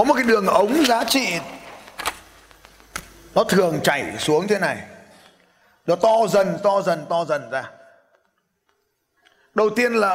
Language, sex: Vietnamese, male